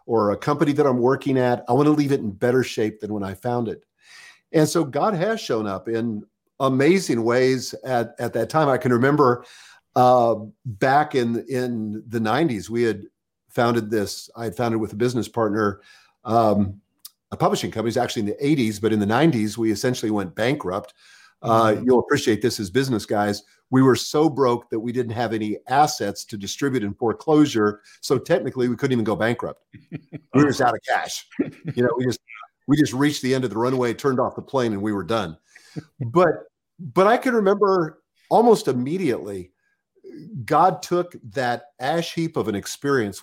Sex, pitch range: male, 110-140 Hz